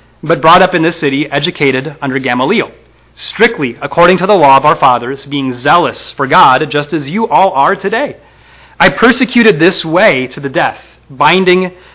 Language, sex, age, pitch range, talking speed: English, male, 30-49, 130-175 Hz, 175 wpm